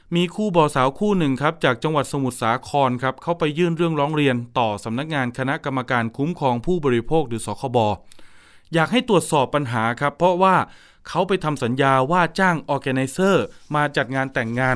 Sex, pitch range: male, 130-170 Hz